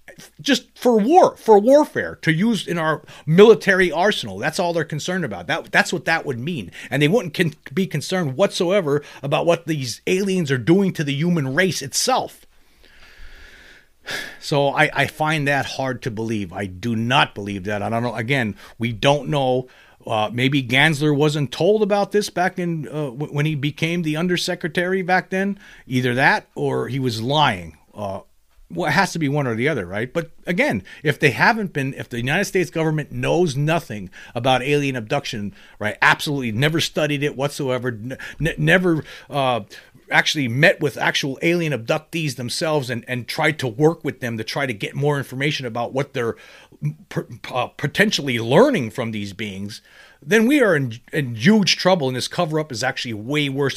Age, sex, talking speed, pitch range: 40-59, male, 185 wpm, 125-170 Hz